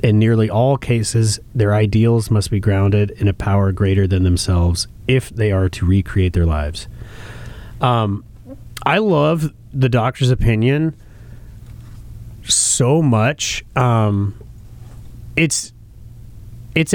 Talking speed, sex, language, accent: 115 wpm, male, English, American